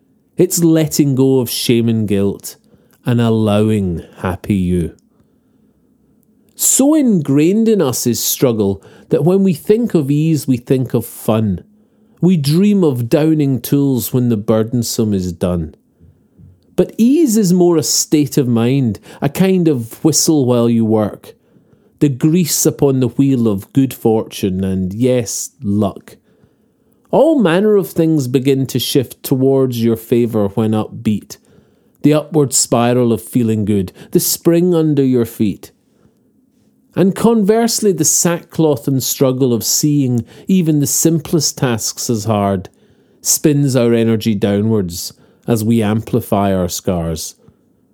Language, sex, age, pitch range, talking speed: English, male, 40-59, 115-170 Hz, 135 wpm